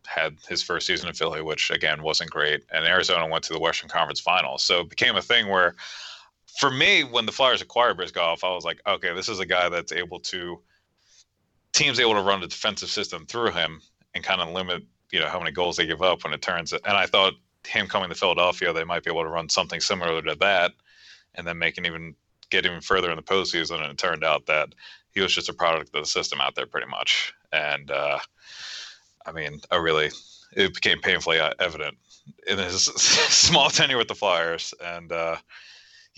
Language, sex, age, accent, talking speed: English, male, 30-49, American, 215 wpm